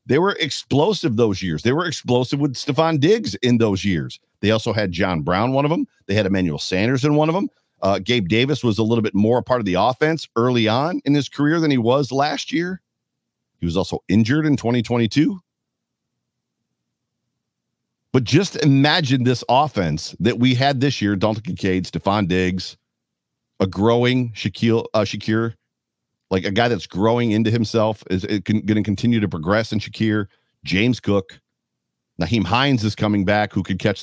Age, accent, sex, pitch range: 50-69, American, male, 100-125 Hz